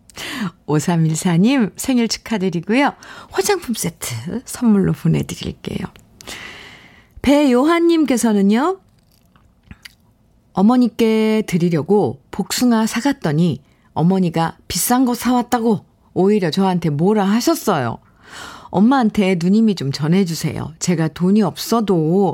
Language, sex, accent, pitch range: Korean, female, native, 165-220 Hz